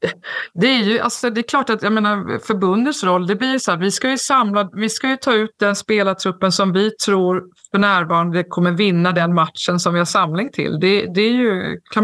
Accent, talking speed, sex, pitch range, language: native, 230 wpm, female, 185-235 Hz, Swedish